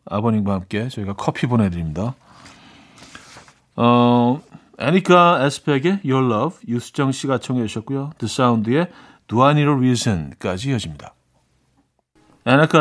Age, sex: 40-59, male